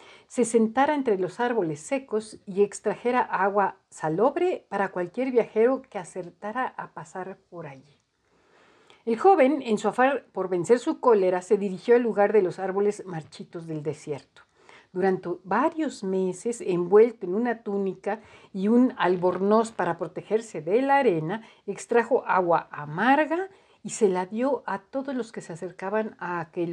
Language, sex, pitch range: Spanish, female, 180-240 Hz